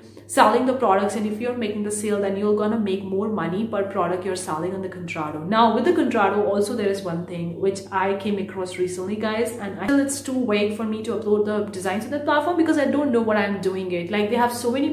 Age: 30-49